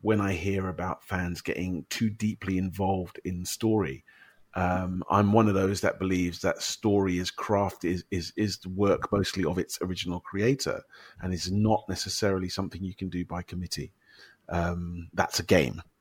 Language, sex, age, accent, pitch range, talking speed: English, male, 40-59, British, 90-100 Hz, 180 wpm